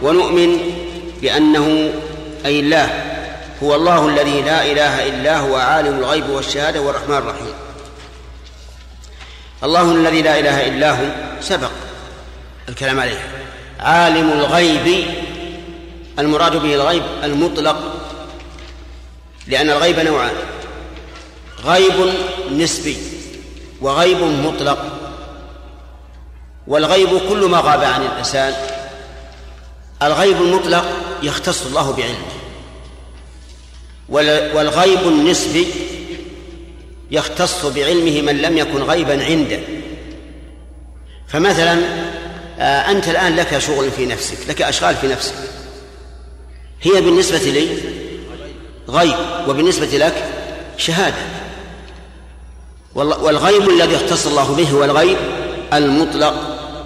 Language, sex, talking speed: Arabic, male, 90 wpm